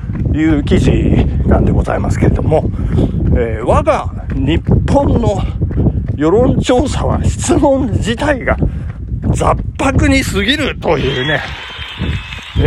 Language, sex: Japanese, male